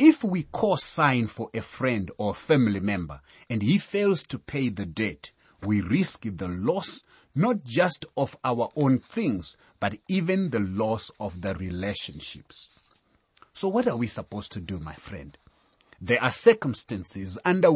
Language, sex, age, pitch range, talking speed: English, male, 30-49, 100-165 Hz, 155 wpm